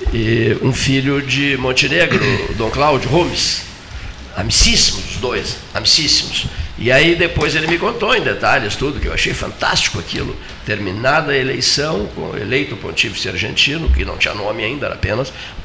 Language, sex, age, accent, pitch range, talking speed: Portuguese, male, 60-79, Brazilian, 95-130 Hz, 155 wpm